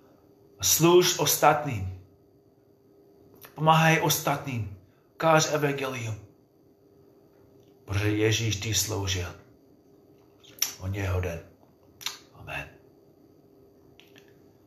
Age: 30-49